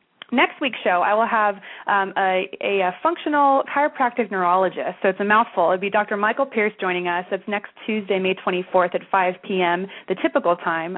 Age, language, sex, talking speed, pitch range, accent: 30-49, English, female, 190 wpm, 185-230 Hz, American